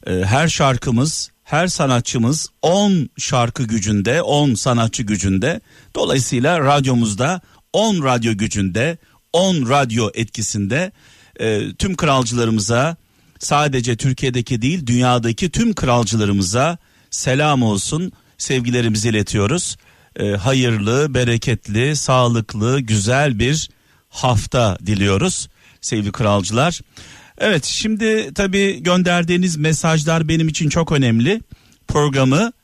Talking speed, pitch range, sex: 95 wpm, 115-150 Hz, male